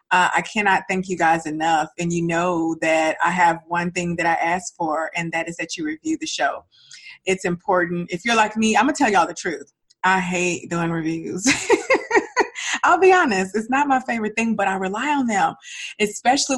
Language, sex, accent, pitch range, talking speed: English, female, American, 180-220 Hz, 210 wpm